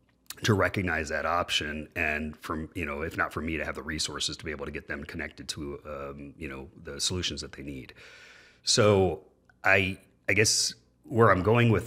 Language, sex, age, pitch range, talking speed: English, male, 30-49, 80-115 Hz, 200 wpm